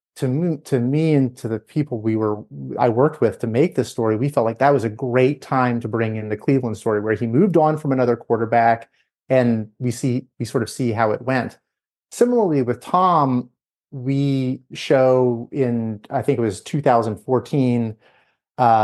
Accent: American